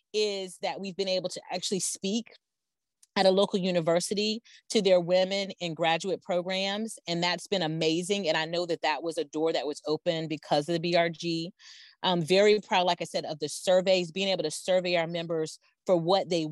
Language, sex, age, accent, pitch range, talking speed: English, female, 30-49, American, 160-190 Hz, 200 wpm